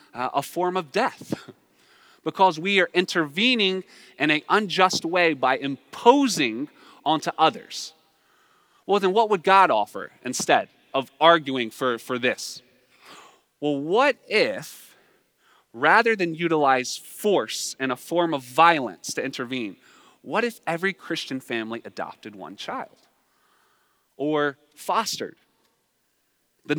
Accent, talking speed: American, 120 wpm